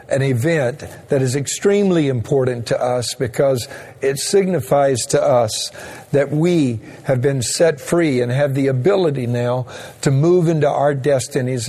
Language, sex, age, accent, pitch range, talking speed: English, male, 50-69, American, 125-160 Hz, 150 wpm